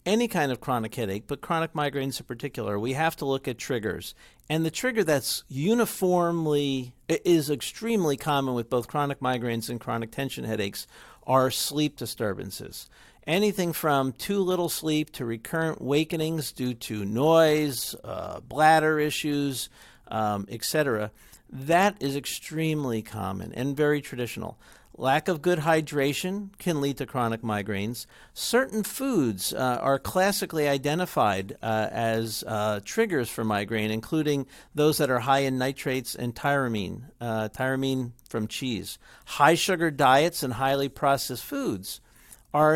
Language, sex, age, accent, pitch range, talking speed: English, male, 50-69, American, 120-160 Hz, 140 wpm